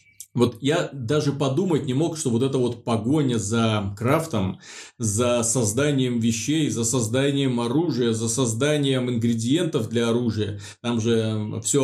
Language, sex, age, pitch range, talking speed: Russian, male, 30-49, 120-150 Hz, 135 wpm